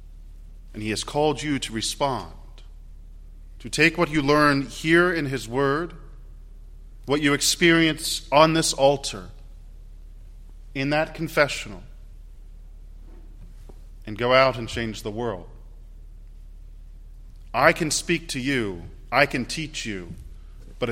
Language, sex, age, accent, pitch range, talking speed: English, male, 40-59, American, 85-135 Hz, 120 wpm